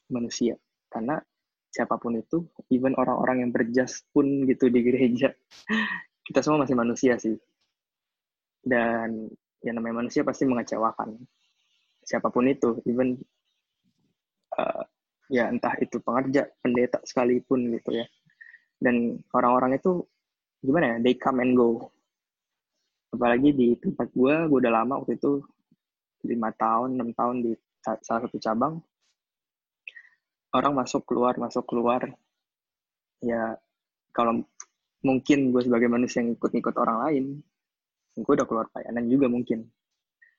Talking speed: 120 wpm